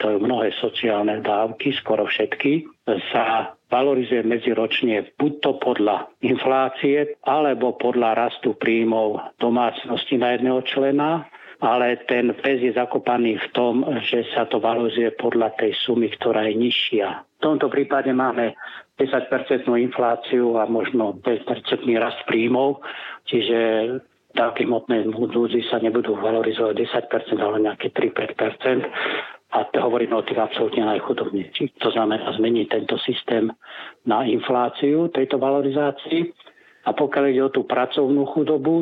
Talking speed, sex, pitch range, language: 130 wpm, male, 115-140 Hz, Slovak